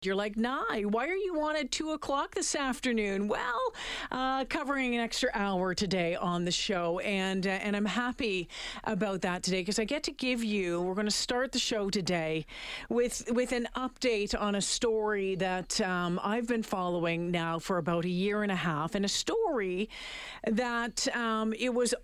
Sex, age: female, 40-59